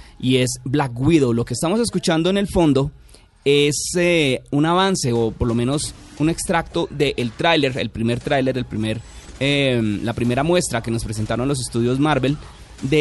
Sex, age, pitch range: male, 30-49, 115-160 Hz